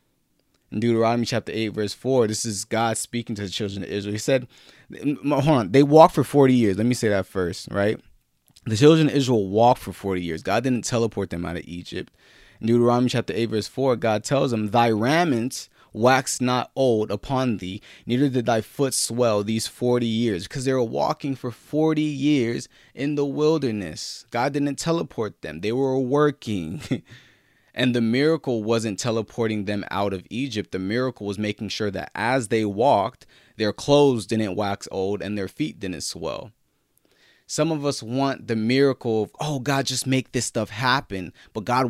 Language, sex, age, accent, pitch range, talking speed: English, male, 20-39, American, 110-135 Hz, 185 wpm